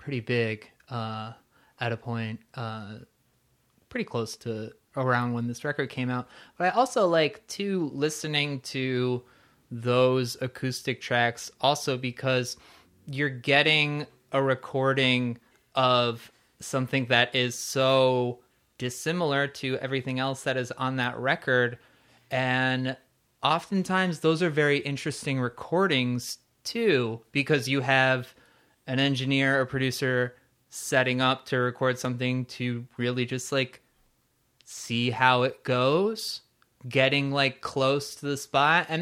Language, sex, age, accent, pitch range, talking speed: English, male, 20-39, American, 125-145 Hz, 125 wpm